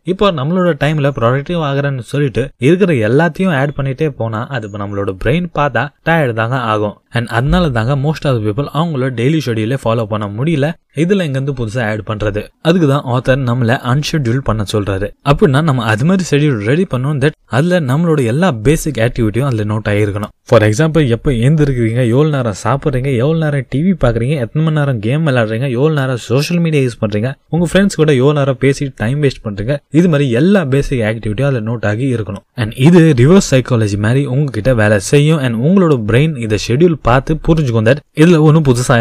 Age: 20-39